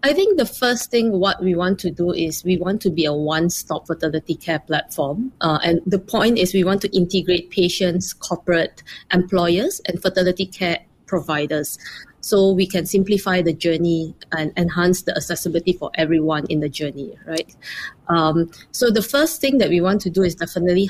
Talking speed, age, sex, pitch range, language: 185 wpm, 20-39, female, 165-190 Hz, English